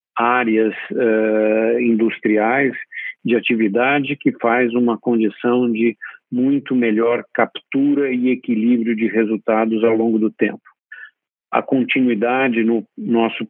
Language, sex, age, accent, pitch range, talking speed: Portuguese, male, 50-69, Brazilian, 115-125 Hz, 105 wpm